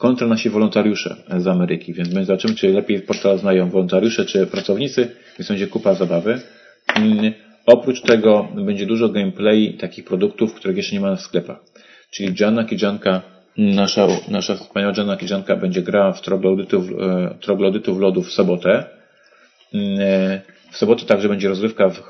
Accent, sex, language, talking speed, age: native, male, Polish, 140 wpm, 40-59